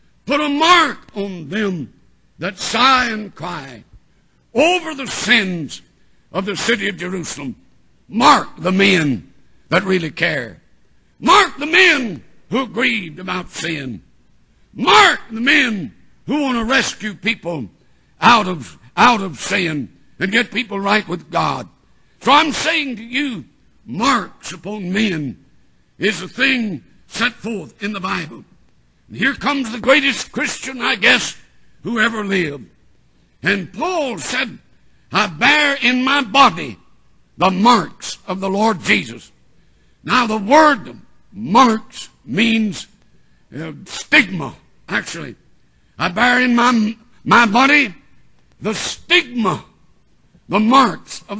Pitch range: 180-255 Hz